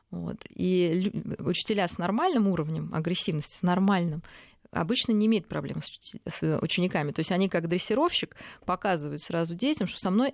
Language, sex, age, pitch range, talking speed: Russian, female, 20-39, 165-205 Hz, 150 wpm